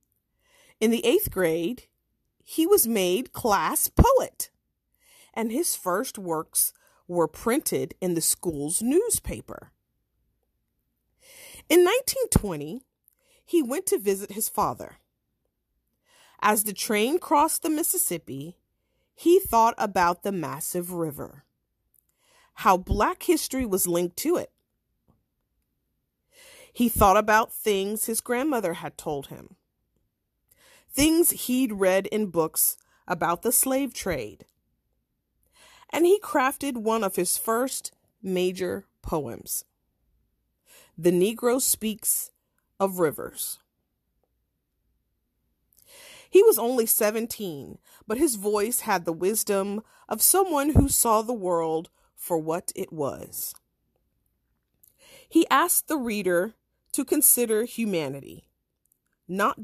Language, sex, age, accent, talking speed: English, female, 40-59, American, 105 wpm